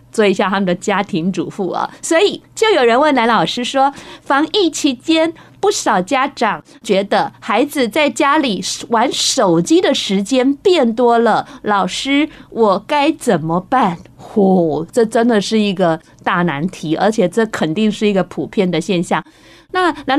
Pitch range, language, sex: 180-265 Hz, Chinese, female